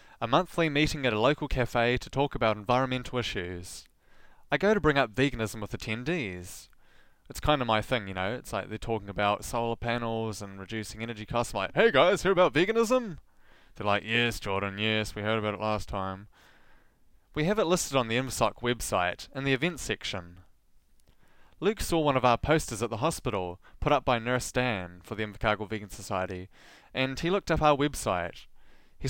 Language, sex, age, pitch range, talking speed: English, male, 20-39, 105-135 Hz, 195 wpm